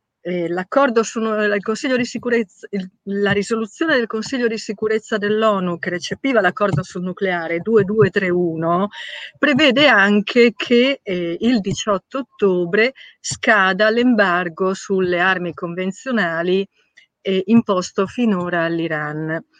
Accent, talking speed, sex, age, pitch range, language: native, 105 wpm, female, 40-59, 185-245 Hz, Italian